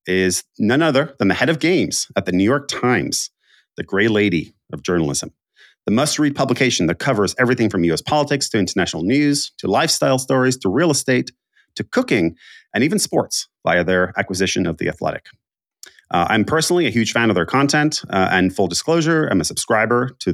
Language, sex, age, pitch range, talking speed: English, male, 30-49, 95-135 Hz, 190 wpm